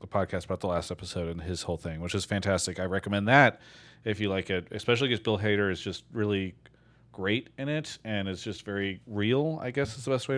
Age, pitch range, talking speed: 30-49, 95-120 Hz, 230 wpm